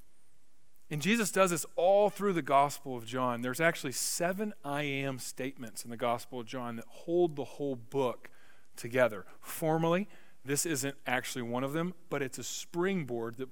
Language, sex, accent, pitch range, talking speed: English, male, American, 125-170 Hz, 175 wpm